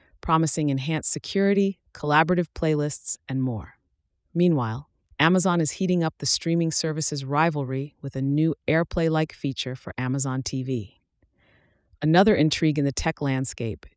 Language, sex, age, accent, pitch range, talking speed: English, female, 30-49, American, 135-165 Hz, 130 wpm